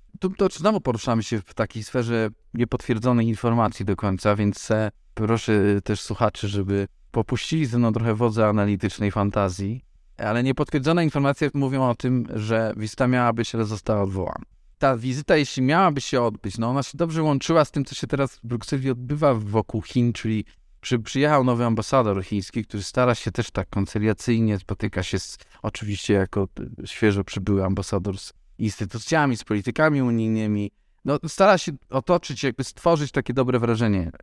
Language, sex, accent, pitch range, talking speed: Polish, male, native, 105-135 Hz, 160 wpm